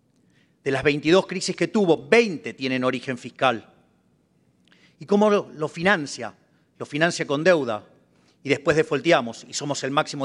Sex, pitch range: male, 140-185 Hz